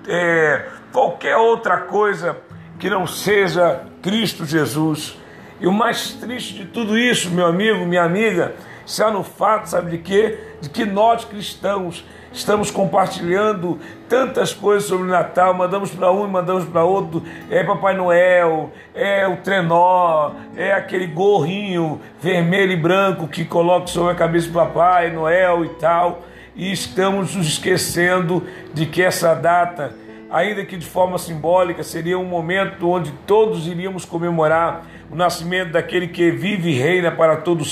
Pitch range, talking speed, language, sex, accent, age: 165-195 Hz, 150 wpm, Portuguese, male, Brazilian, 60-79